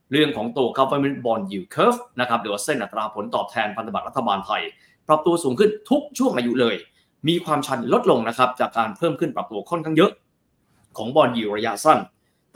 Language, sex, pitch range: Thai, male, 115-180 Hz